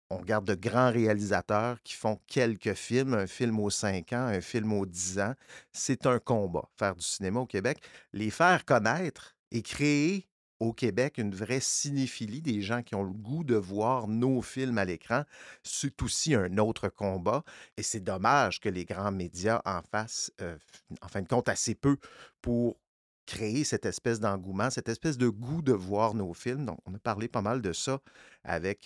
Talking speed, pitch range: 190 wpm, 105-135 Hz